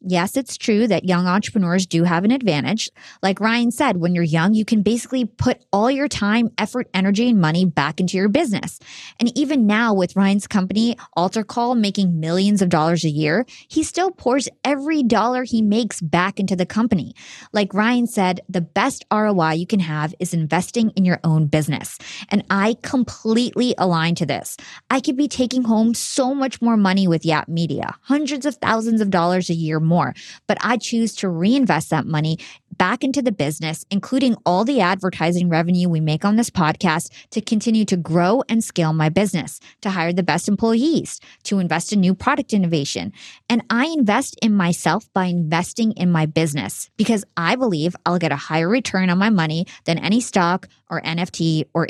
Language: English